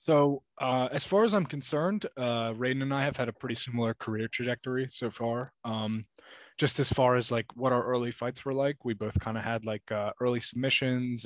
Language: English